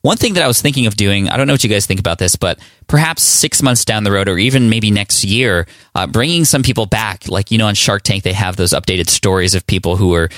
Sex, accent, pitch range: male, American, 95-120 Hz